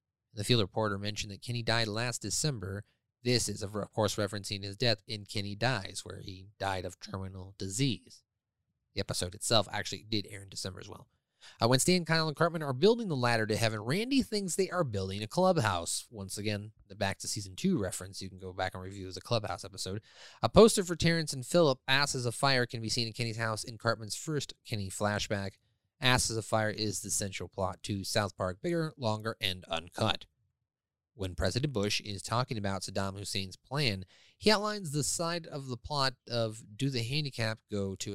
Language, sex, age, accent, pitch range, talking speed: English, male, 20-39, American, 100-135 Hz, 200 wpm